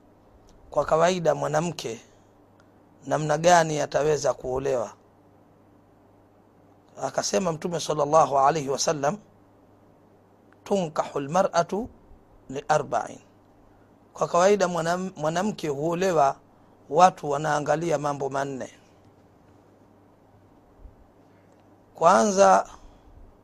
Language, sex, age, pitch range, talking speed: Swahili, male, 40-59, 100-165 Hz, 60 wpm